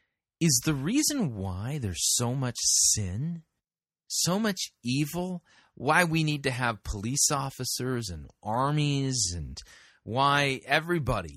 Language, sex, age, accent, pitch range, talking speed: English, male, 30-49, American, 105-150 Hz, 120 wpm